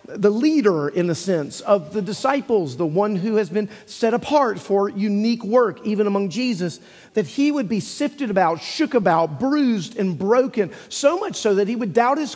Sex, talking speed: male, 195 wpm